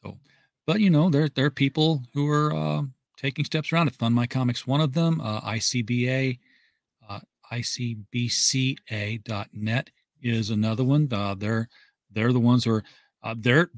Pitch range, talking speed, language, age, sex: 110-135 Hz, 155 wpm, English, 40-59, male